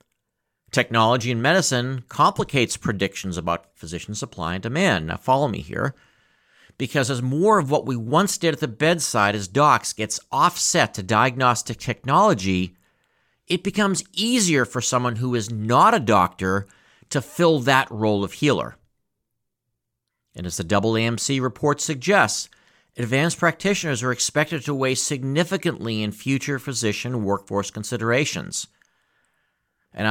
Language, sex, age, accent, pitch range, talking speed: English, male, 50-69, American, 100-140 Hz, 135 wpm